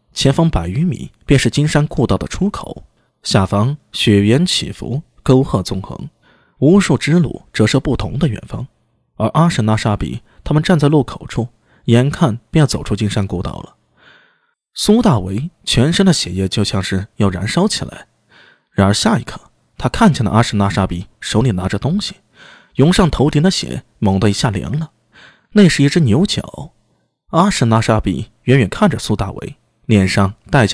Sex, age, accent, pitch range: male, 20-39, native, 105-165 Hz